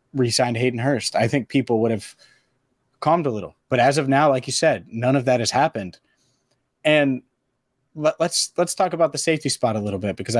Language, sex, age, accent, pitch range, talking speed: English, male, 30-49, American, 120-140 Hz, 210 wpm